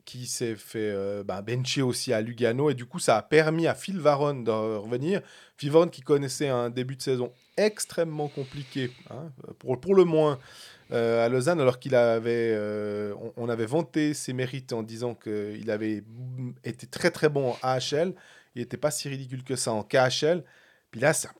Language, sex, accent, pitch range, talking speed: French, male, French, 120-155 Hz, 195 wpm